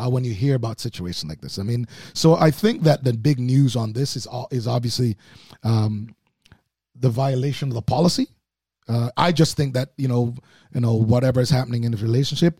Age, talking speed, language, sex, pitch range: 30-49, 200 wpm, English, male, 120-145 Hz